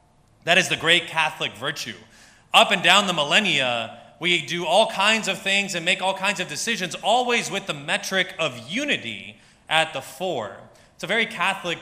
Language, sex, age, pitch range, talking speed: English, male, 30-49, 145-195 Hz, 185 wpm